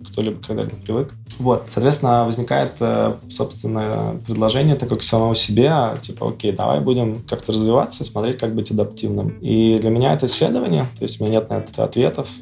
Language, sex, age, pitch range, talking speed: Russian, male, 20-39, 105-120 Hz, 160 wpm